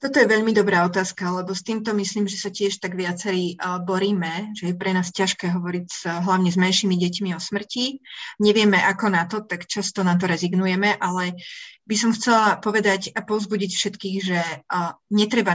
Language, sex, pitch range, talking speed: Slovak, female, 180-215 Hz, 180 wpm